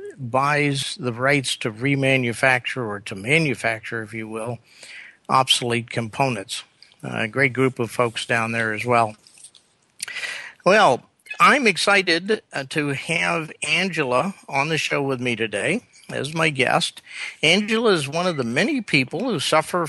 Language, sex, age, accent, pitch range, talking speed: English, male, 50-69, American, 130-175 Hz, 140 wpm